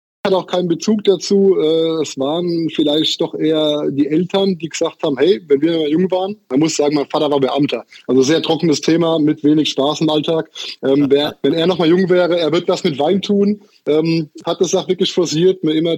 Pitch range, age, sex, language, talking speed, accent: 150-185 Hz, 20-39, male, German, 215 wpm, German